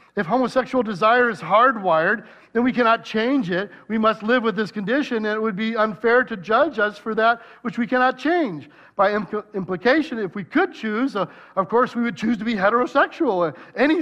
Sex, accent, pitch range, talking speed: male, American, 200-260 Hz, 195 wpm